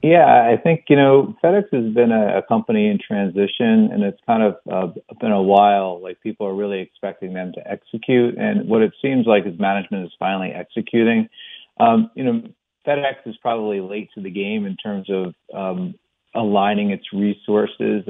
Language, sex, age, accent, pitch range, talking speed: English, male, 40-59, American, 100-145 Hz, 185 wpm